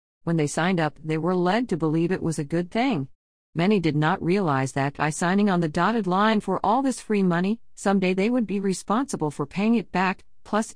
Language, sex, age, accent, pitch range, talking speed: English, female, 50-69, American, 145-195 Hz, 225 wpm